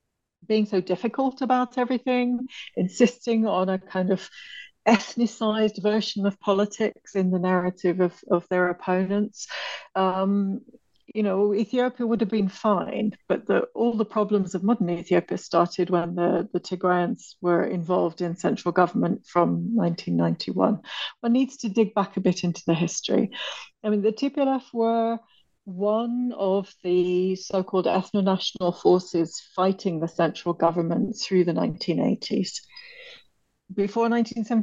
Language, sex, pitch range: English, female, 180-225 Hz